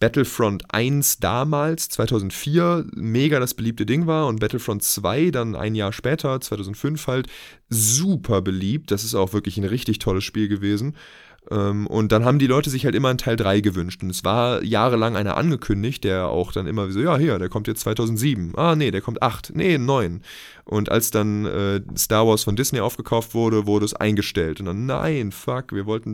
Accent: German